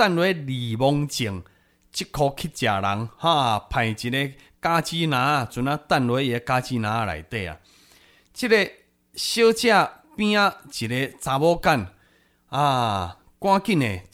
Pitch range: 125-185 Hz